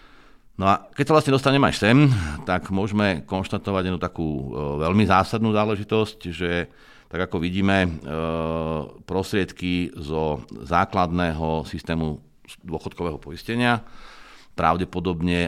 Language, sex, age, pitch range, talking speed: Slovak, male, 60-79, 80-95 Hz, 105 wpm